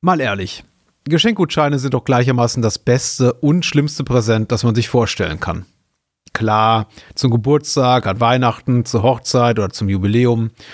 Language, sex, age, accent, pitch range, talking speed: German, male, 30-49, German, 115-150 Hz, 145 wpm